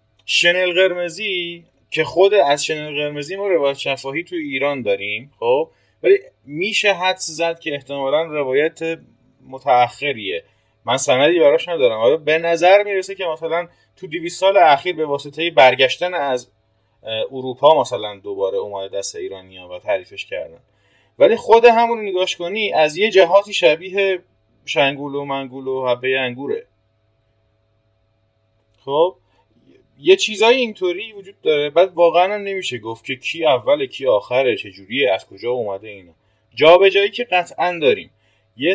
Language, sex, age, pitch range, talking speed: English, male, 30-49, 115-195 Hz, 140 wpm